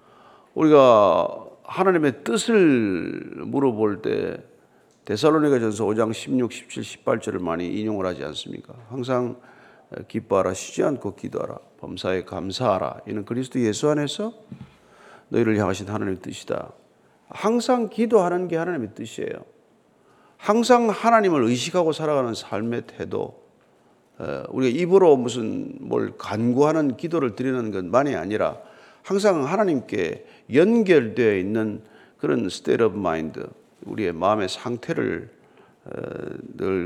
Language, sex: Korean, male